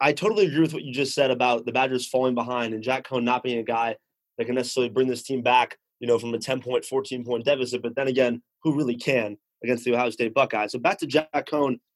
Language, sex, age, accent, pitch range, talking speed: English, male, 20-39, American, 125-150 Hz, 250 wpm